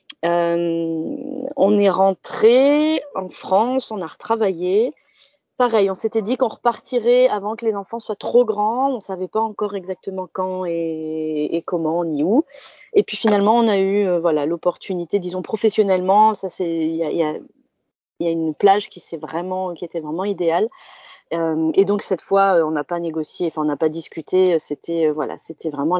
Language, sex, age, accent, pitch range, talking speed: French, female, 30-49, French, 165-215 Hz, 180 wpm